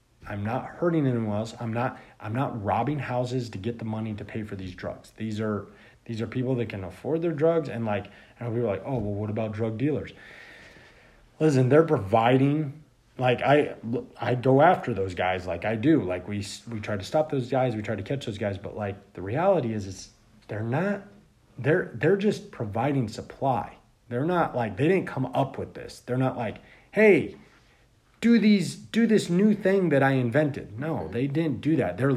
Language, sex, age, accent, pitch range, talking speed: English, male, 30-49, American, 110-150 Hz, 205 wpm